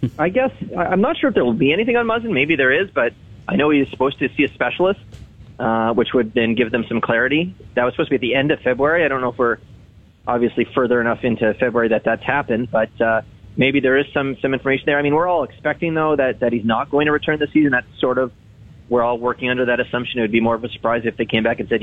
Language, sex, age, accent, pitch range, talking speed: English, male, 30-49, American, 115-145 Hz, 280 wpm